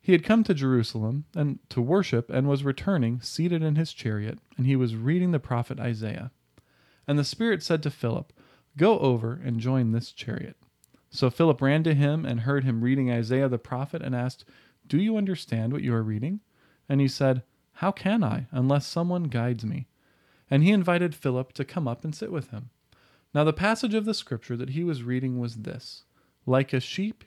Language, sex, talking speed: English, male, 200 wpm